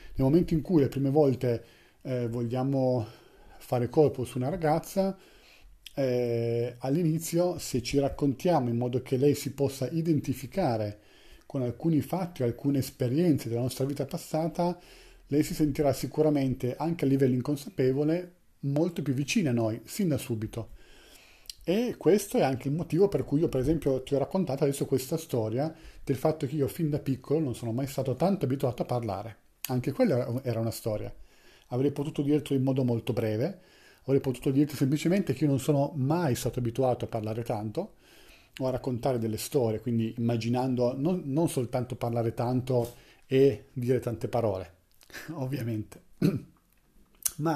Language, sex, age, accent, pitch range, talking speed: Italian, male, 40-59, native, 120-155 Hz, 160 wpm